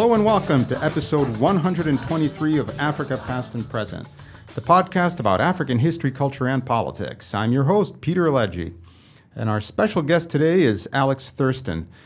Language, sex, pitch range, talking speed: English, male, 105-150 Hz, 160 wpm